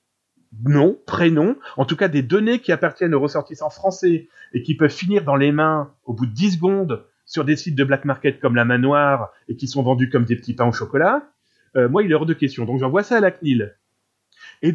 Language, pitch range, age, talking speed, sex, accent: French, 140-200 Hz, 30-49, 230 wpm, male, French